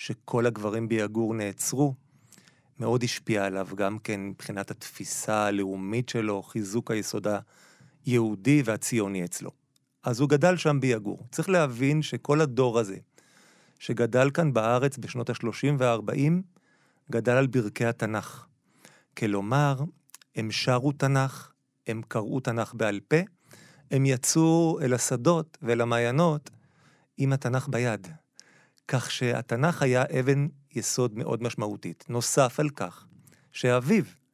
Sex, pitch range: male, 115-155 Hz